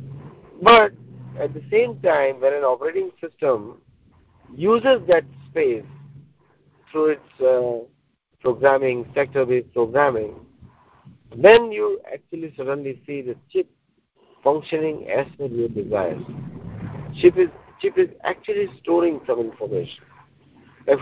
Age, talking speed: 50-69, 115 wpm